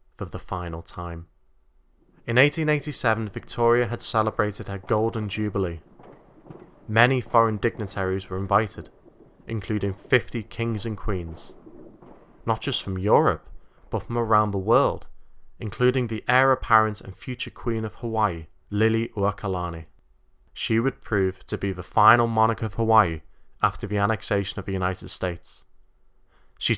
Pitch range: 95-115 Hz